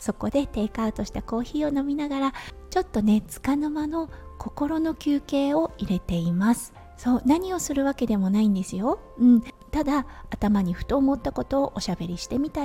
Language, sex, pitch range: Japanese, female, 210-275 Hz